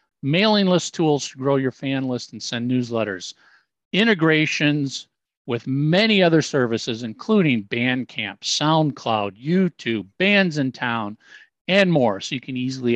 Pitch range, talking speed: 125-160 Hz, 135 wpm